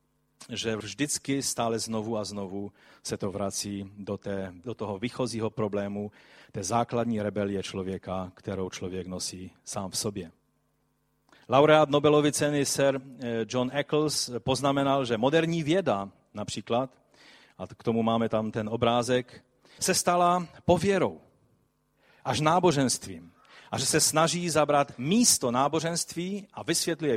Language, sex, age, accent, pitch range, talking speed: Czech, male, 40-59, native, 115-145 Hz, 120 wpm